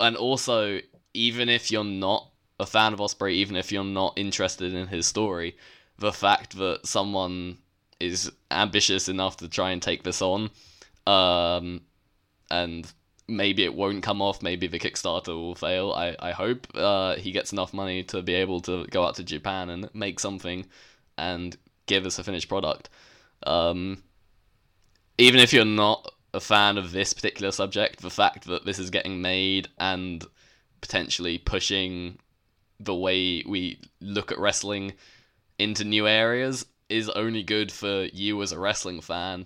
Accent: British